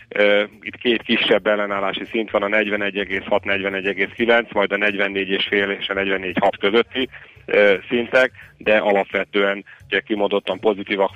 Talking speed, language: 110 wpm, Hungarian